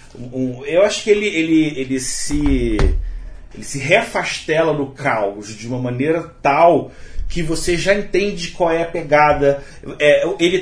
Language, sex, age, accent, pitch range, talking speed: Portuguese, male, 40-59, Brazilian, 135-200 Hz, 125 wpm